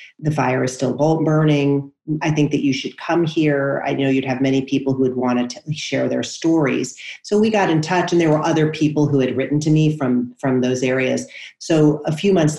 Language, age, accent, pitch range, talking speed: English, 40-59, American, 130-155 Hz, 230 wpm